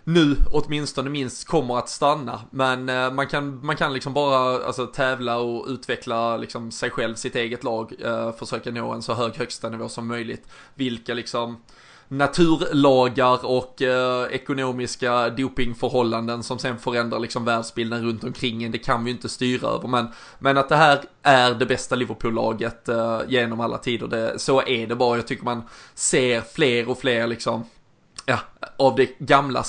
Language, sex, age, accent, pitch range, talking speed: Swedish, male, 20-39, native, 120-130 Hz, 170 wpm